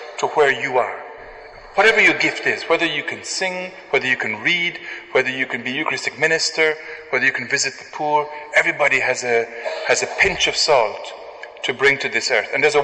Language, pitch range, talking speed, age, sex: English, 130-155 Hz, 205 wpm, 40-59, male